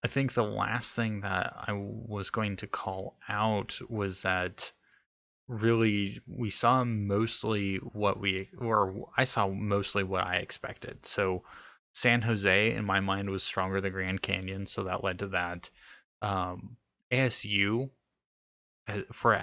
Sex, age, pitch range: male, 20-39, 95-110 Hz